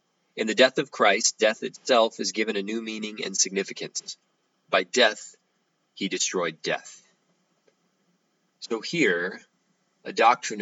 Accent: American